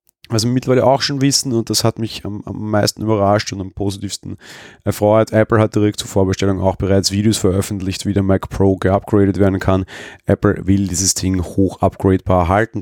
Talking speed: 195 wpm